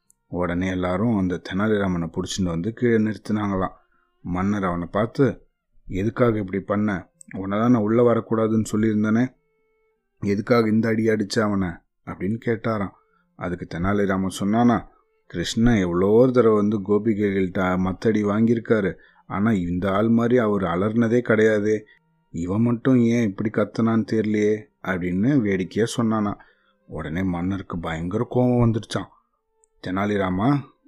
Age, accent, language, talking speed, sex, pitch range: 30-49, native, Tamil, 110 wpm, male, 95-120 Hz